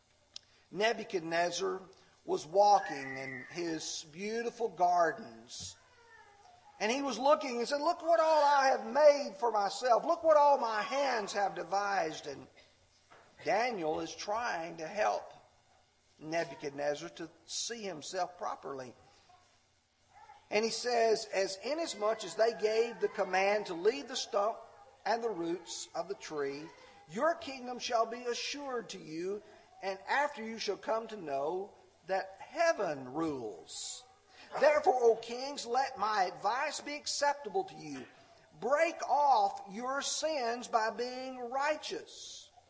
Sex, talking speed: male, 130 wpm